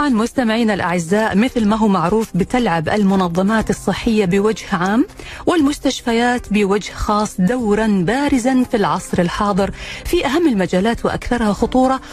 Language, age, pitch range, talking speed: Arabic, 40-59, 185-255 Hz, 125 wpm